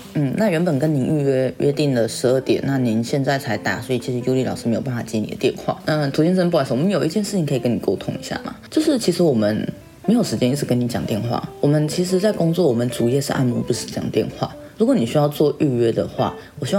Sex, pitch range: female, 125-190 Hz